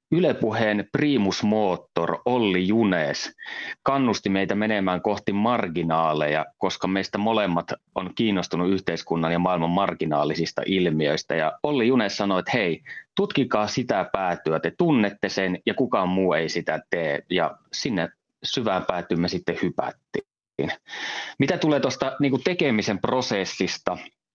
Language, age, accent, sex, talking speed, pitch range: Finnish, 30-49, native, male, 120 wpm, 85-105 Hz